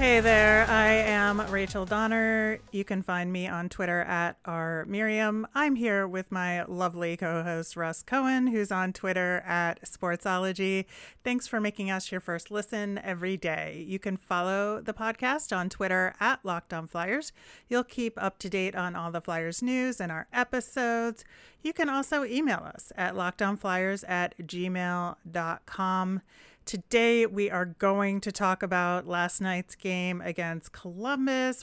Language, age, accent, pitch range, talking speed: English, 30-49, American, 175-220 Hz, 155 wpm